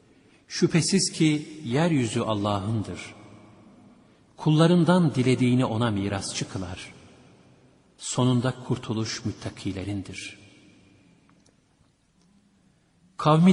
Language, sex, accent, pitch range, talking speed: Turkish, male, native, 105-150 Hz, 60 wpm